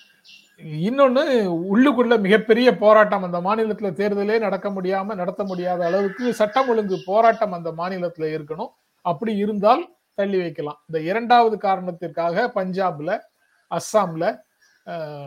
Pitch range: 165-220 Hz